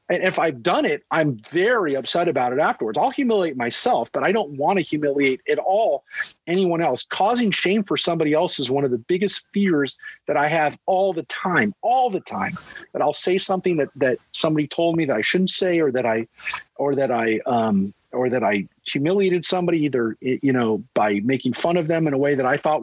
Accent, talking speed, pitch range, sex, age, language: American, 220 wpm, 150-200 Hz, male, 40-59, English